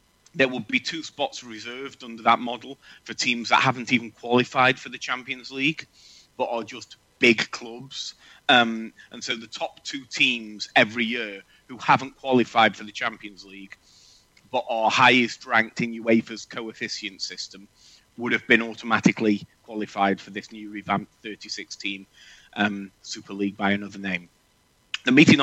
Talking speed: 160 wpm